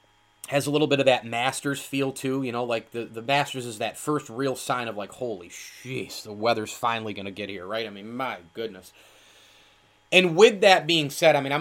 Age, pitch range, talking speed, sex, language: 30-49, 115-150 Hz, 225 wpm, male, English